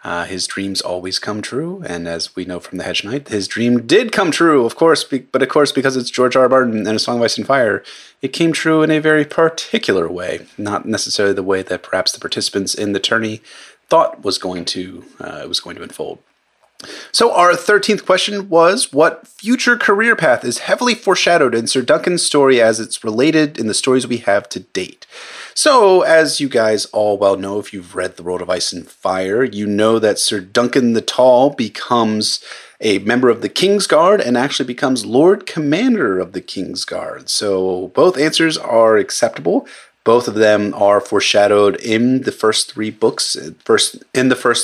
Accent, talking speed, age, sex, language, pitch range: American, 200 wpm, 30-49, male, English, 95-145 Hz